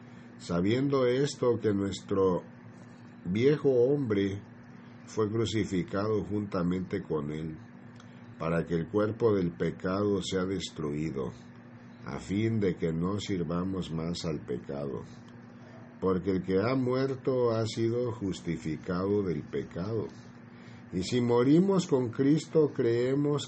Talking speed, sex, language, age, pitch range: 110 wpm, male, Spanish, 50-69, 85-115 Hz